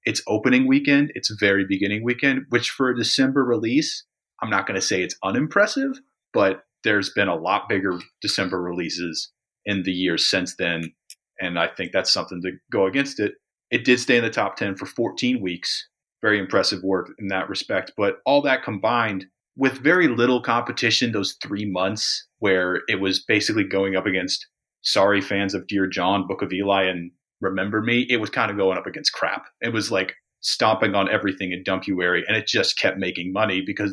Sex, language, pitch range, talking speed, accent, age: male, English, 95-120 Hz, 195 wpm, American, 30-49